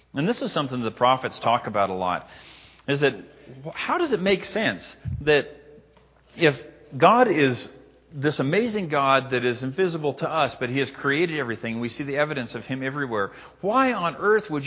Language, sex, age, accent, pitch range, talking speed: English, male, 40-59, American, 125-170 Hz, 185 wpm